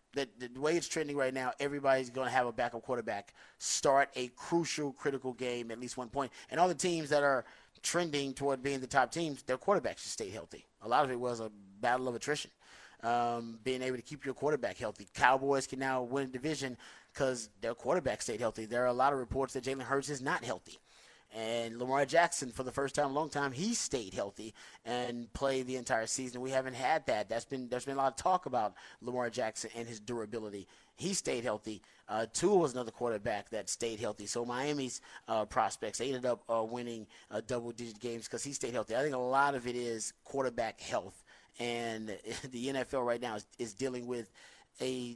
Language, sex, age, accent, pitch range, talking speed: English, male, 30-49, American, 120-140 Hz, 215 wpm